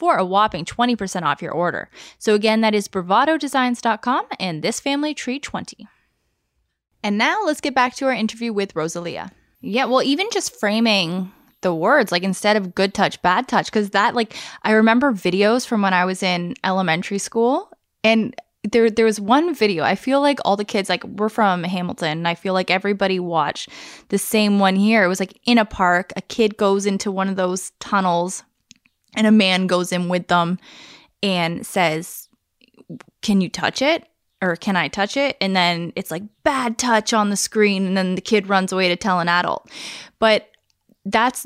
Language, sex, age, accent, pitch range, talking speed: English, female, 10-29, American, 185-235 Hz, 190 wpm